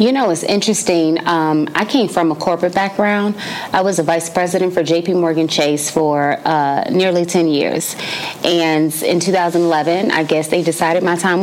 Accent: American